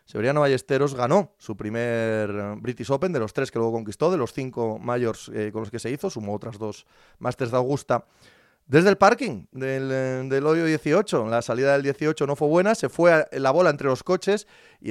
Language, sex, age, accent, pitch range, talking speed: Spanish, male, 30-49, Spanish, 115-150 Hz, 205 wpm